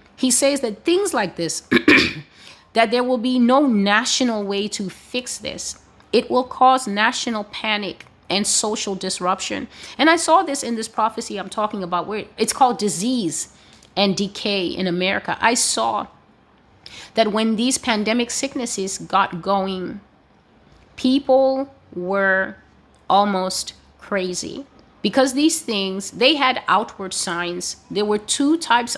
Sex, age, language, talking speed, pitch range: female, 30-49, English, 135 wpm, 190-250 Hz